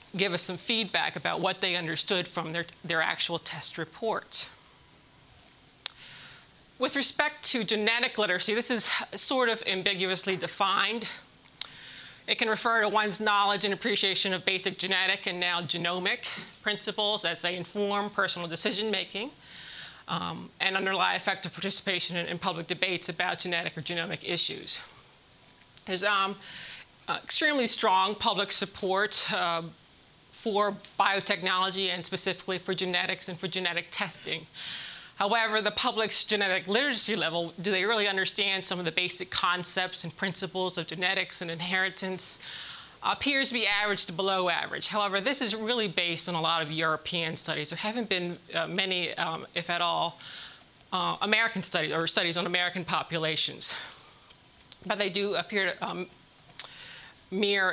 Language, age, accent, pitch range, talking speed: English, 30-49, American, 175-205 Hz, 145 wpm